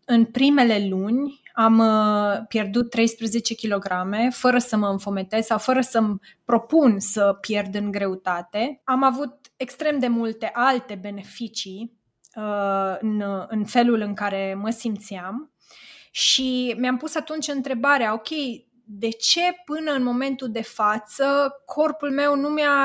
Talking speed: 135 wpm